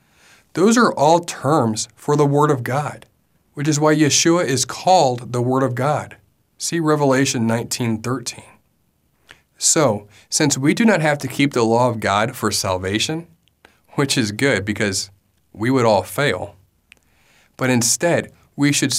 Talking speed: 150 wpm